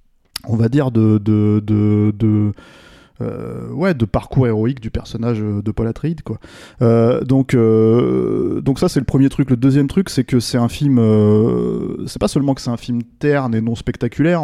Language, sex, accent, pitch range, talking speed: French, male, French, 115-145 Hz, 195 wpm